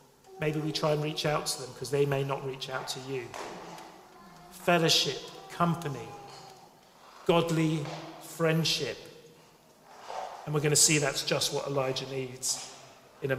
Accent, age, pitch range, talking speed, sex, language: British, 40-59, 155-215 Hz, 145 wpm, male, English